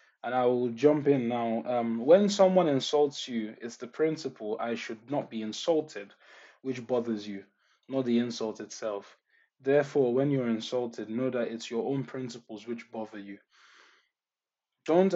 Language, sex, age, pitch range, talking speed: English, male, 20-39, 115-140 Hz, 160 wpm